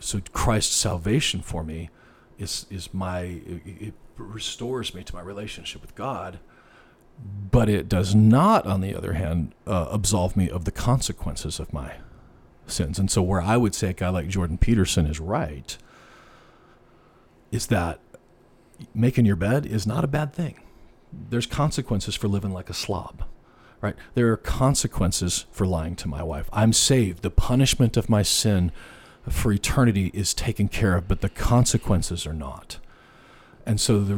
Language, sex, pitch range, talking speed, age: English, male, 90-120 Hz, 165 wpm, 40-59